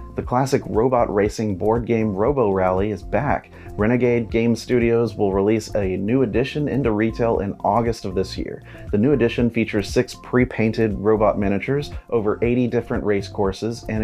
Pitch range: 100-120 Hz